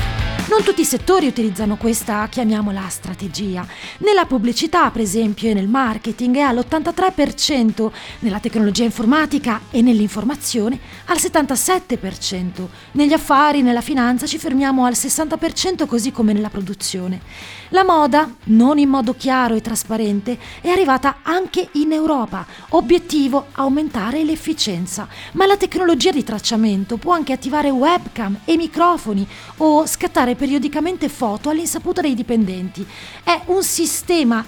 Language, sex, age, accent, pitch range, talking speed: Italian, female, 30-49, native, 230-315 Hz, 125 wpm